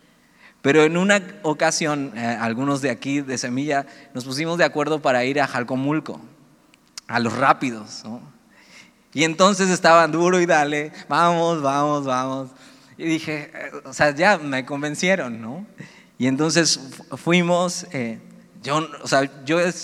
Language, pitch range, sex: Spanish, 135-170 Hz, male